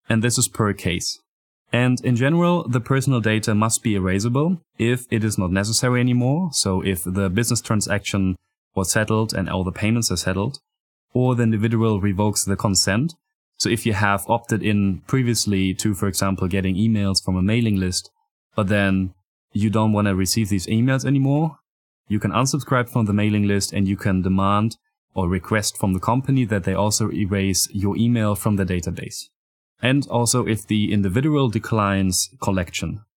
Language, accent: English, German